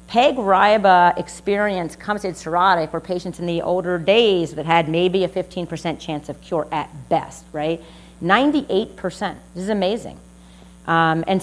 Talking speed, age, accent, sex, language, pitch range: 145 wpm, 40-59, American, female, English, 160-195 Hz